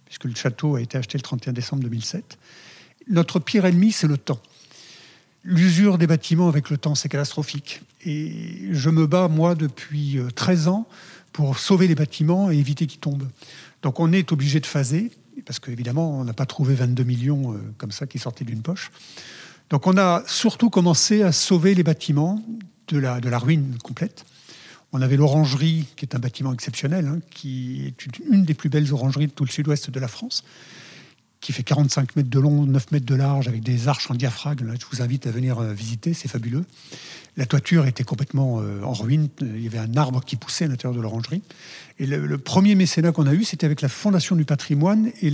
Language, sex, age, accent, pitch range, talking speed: French, male, 50-69, French, 135-170 Hz, 210 wpm